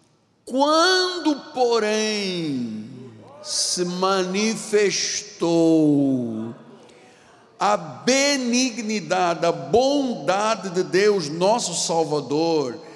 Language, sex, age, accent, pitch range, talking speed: Portuguese, male, 60-79, Brazilian, 180-260 Hz, 55 wpm